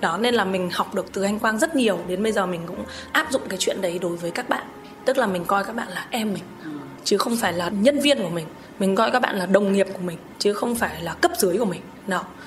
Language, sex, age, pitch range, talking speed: Vietnamese, female, 20-39, 190-260 Hz, 290 wpm